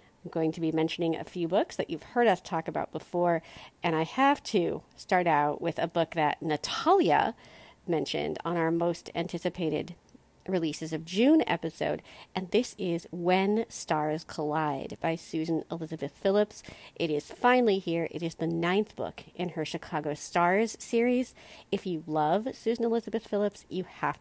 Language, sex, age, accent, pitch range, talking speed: English, female, 40-59, American, 160-225 Hz, 165 wpm